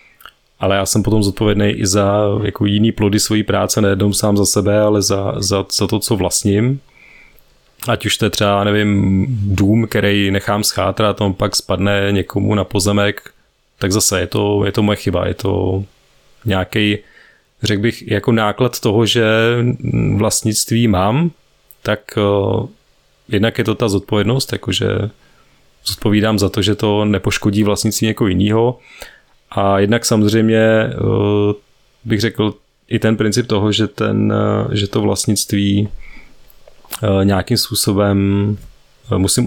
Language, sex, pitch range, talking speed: Czech, male, 100-115 Hz, 140 wpm